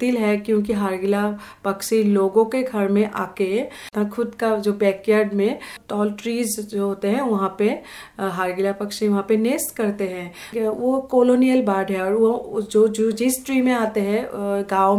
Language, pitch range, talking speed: Hindi, 200-240 Hz, 155 wpm